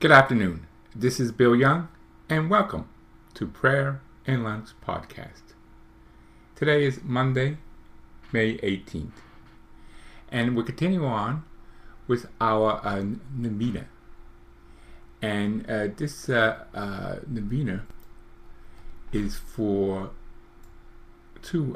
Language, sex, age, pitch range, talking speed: English, male, 50-69, 100-120 Hz, 100 wpm